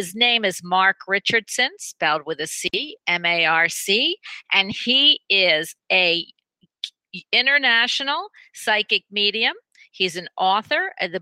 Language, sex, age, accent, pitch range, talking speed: English, female, 50-69, American, 180-225 Hz, 120 wpm